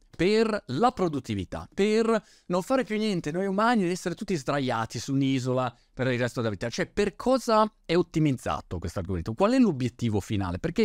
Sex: male